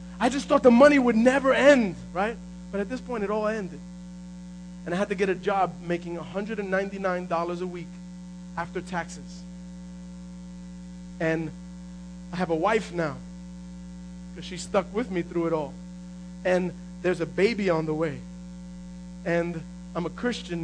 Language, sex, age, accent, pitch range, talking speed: English, male, 30-49, American, 180-225 Hz, 155 wpm